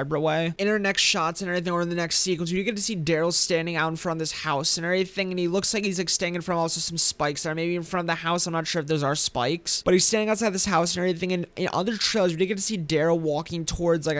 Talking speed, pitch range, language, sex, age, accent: 320 wpm, 155-180 Hz, English, male, 20-39, American